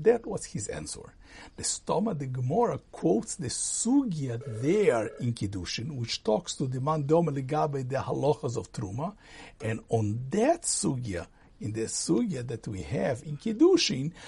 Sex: male